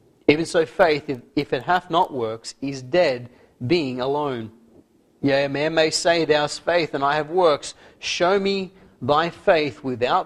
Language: English